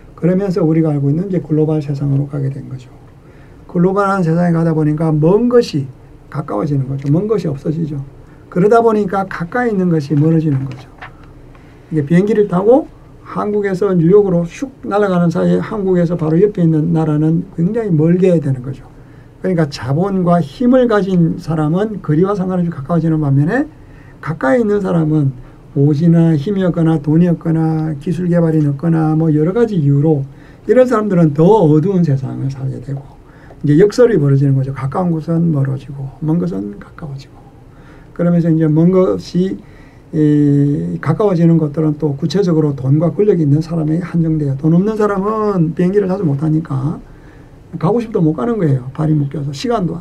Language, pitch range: Korean, 145-180 Hz